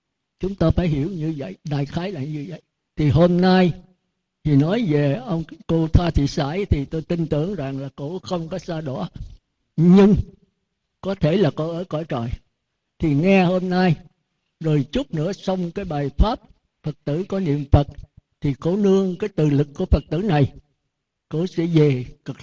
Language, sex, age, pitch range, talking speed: Vietnamese, male, 60-79, 145-185 Hz, 190 wpm